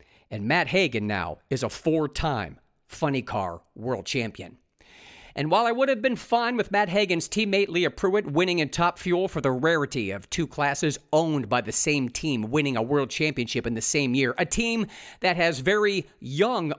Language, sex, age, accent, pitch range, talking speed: English, male, 50-69, American, 130-180 Hz, 190 wpm